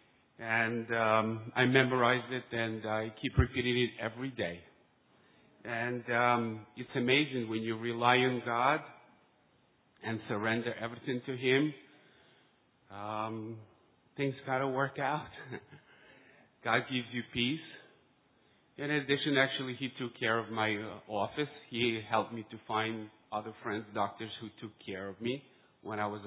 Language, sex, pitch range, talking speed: English, male, 105-130 Hz, 140 wpm